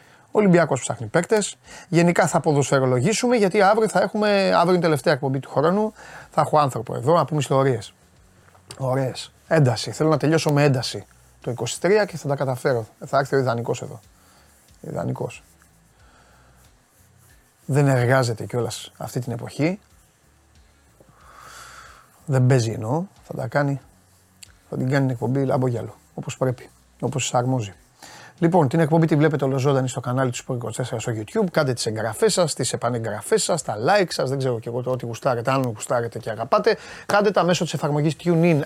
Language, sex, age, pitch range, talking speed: Greek, male, 30-49, 125-165 Hz, 160 wpm